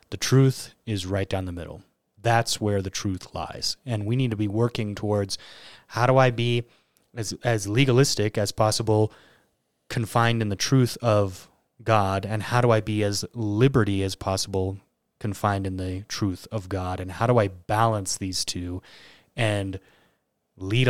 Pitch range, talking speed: 95-115 Hz, 165 wpm